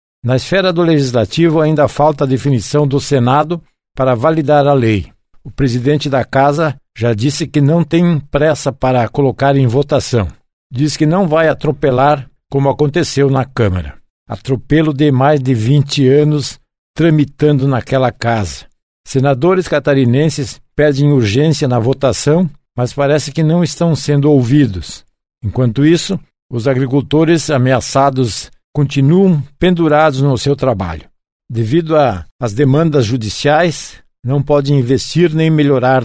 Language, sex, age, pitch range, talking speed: Portuguese, male, 60-79, 130-150 Hz, 130 wpm